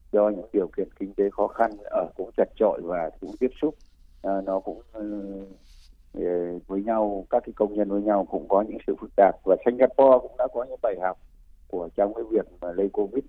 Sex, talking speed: male, 215 wpm